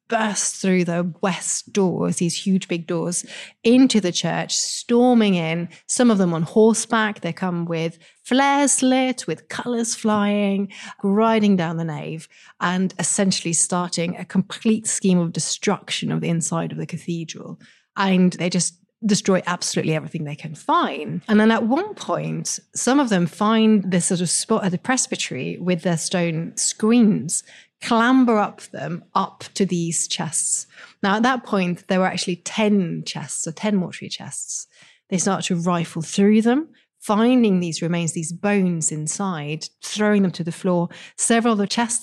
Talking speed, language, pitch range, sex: 165 wpm, English, 170-215 Hz, female